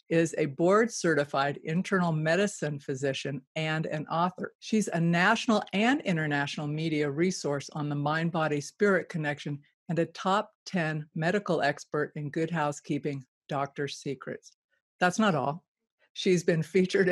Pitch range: 150-180 Hz